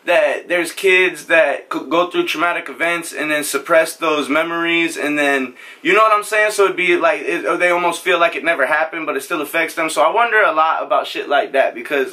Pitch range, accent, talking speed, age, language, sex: 140-195 Hz, American, 235 wpm, 20-39, English, male